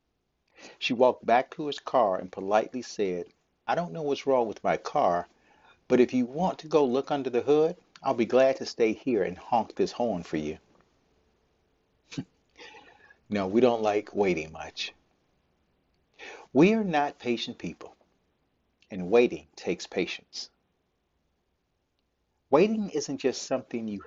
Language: English